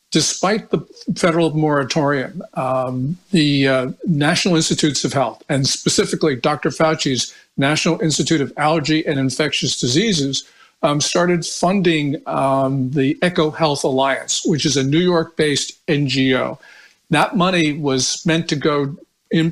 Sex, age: male, 50-69